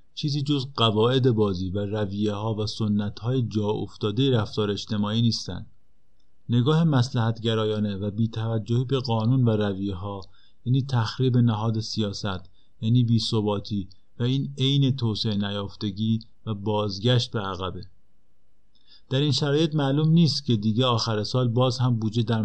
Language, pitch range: Persian, 105-130 Hz